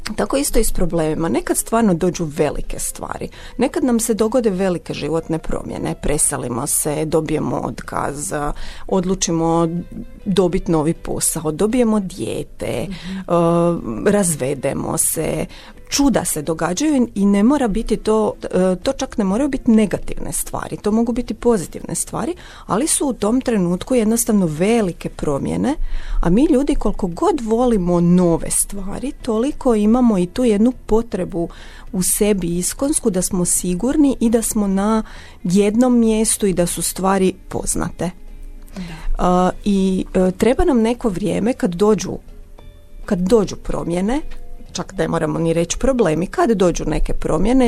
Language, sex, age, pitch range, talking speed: Croatian, female, 30-49, 170-230 Hz, 135 wpm